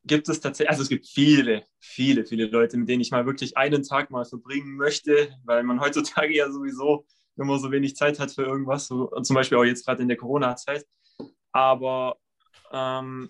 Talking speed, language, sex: 200 wpm, German, male